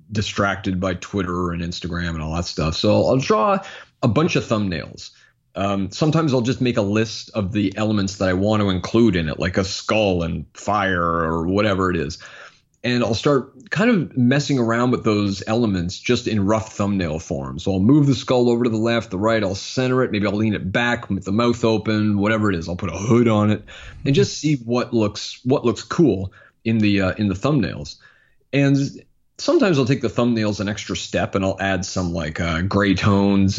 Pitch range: 95-120 Hz